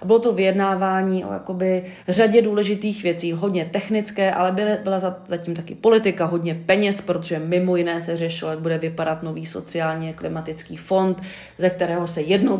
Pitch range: 170-195 Hz